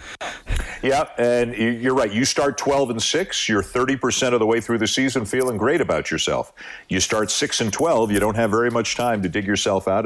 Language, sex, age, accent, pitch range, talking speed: English, male, 50-69, American, 95-120 Hz, 215 wpm